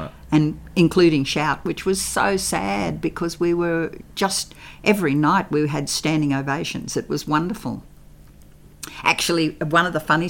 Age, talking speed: 50-69, 145 wpm